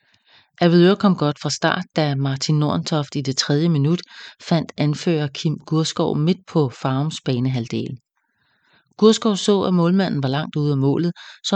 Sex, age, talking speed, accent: female, 30-49, 155 wpm, Danish